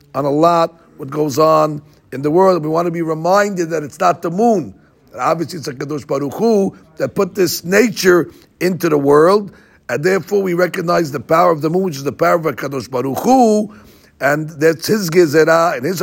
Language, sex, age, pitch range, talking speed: English, male, 60-79, 145-180 Hz, 200 wpm